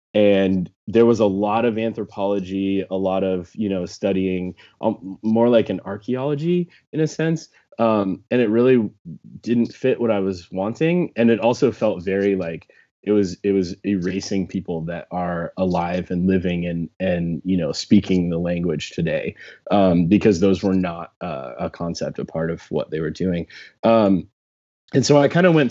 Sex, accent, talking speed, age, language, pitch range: male, American, 180 wpm, 20-39, English, 95-115 Hz